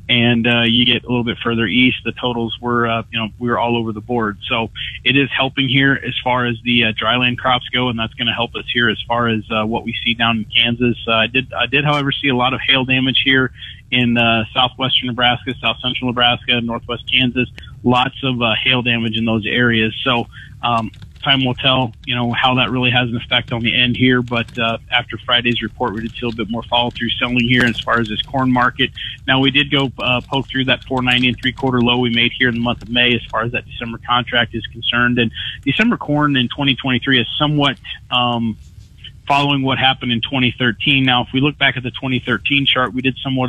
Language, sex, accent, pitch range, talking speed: English, male, American, 115-130 Hz, 240 wpm